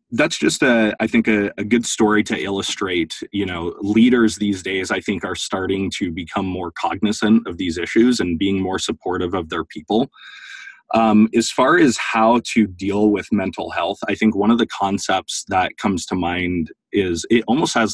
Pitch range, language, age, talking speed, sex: 95-115 Hz, English, 20-39, 195 wpm, male